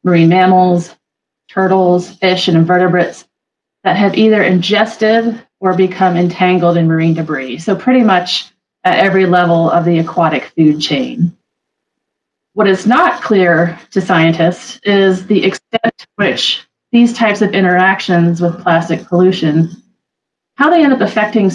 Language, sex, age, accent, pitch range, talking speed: English, female, 30-49, American, 170-205 Hz, 140 wpm